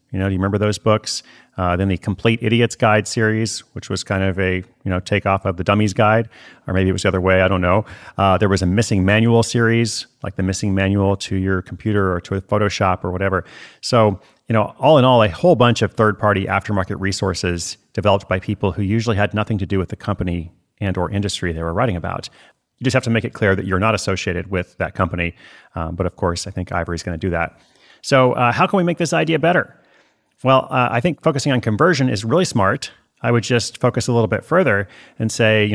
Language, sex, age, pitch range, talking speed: English, male, 30-49, 95-120 Hz, 240 wpm